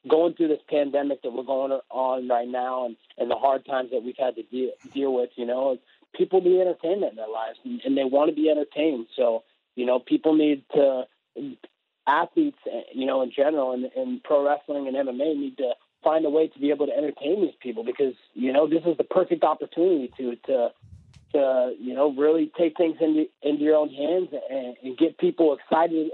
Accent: American